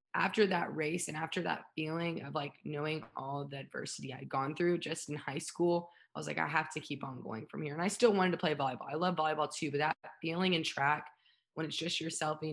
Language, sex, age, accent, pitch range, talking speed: English, female, 20-39, American, 150-180 Hz, 250 wpm